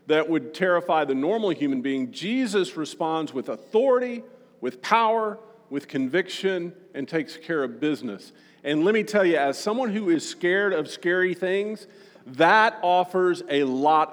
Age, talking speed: 50-69, 155 wpm